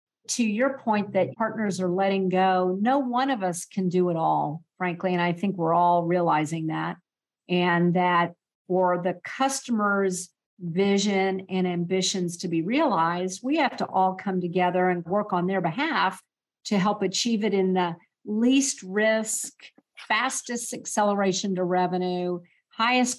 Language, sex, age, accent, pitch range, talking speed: English, female, 50-69, American, 180-210 Hz, 155 wpm